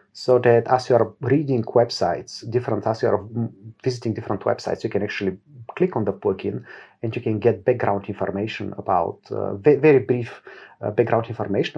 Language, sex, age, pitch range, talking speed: English, male, 40-59, 110-135 Hz, 175 wpm